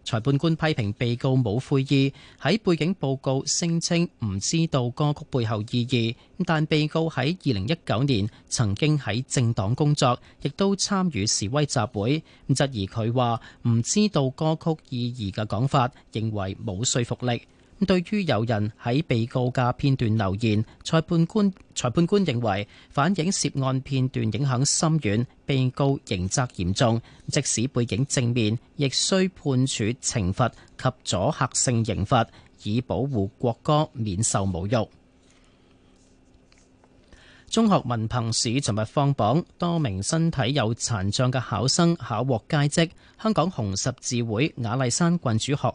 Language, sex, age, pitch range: Chinese, male, 30-49, 110-150 Hz